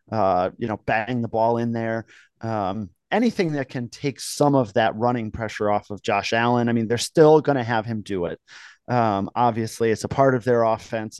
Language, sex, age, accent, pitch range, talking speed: English, male, 30-49, American, 115-140 Hz, 215 wpm